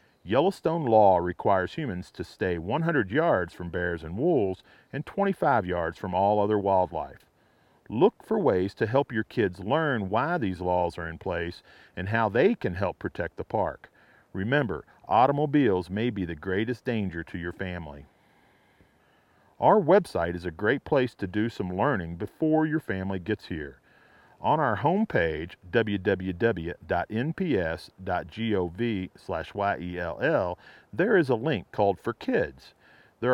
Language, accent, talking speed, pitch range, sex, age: English, American, 140 wpm, 90-125 Hz, male, 40-59